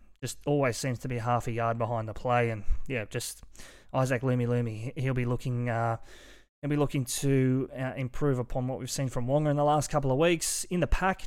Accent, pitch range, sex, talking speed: Australian, 120-150 Hz, male, 225 wpm